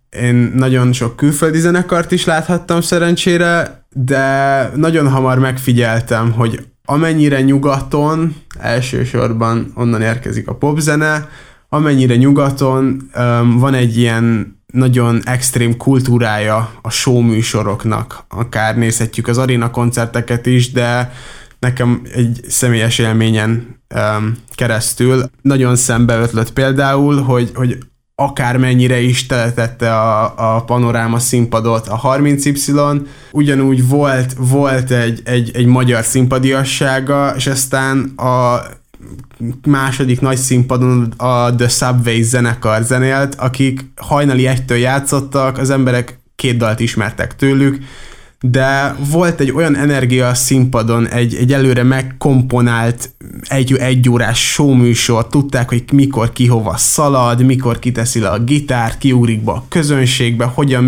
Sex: male